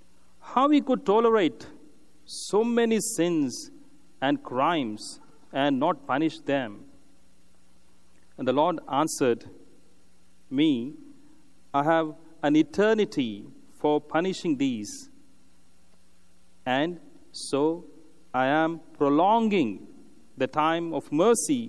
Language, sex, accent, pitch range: English, male, Indian, 140-230 Hz